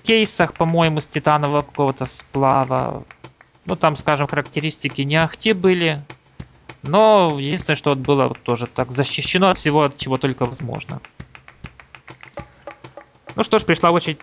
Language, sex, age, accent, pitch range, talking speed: Russian, male, 20-39, native, 145-180 Hz, 135 wpm